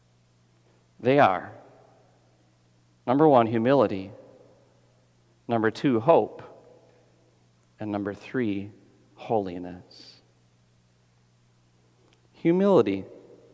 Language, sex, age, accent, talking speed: English, male, 40-59, American, 60 wpm